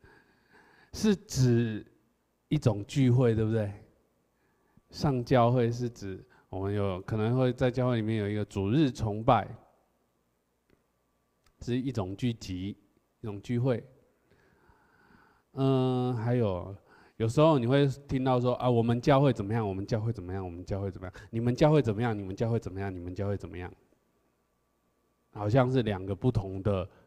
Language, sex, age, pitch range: Chinese, male, 20-39, 105-140 Hz